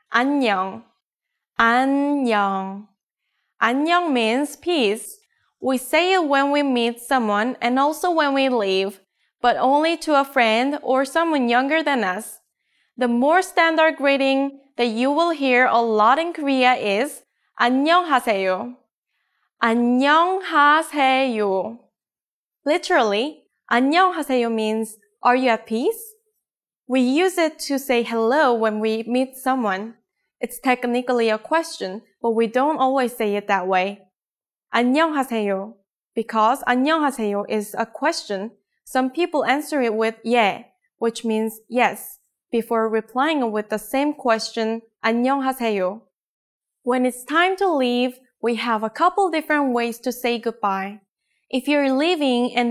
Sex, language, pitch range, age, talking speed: female, English, 225-290 Hz, 10-29, 130 wpm